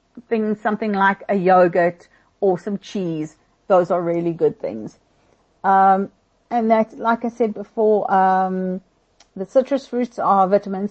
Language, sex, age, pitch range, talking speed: English, female, 50-69, 180-220 Hz, 145 wpm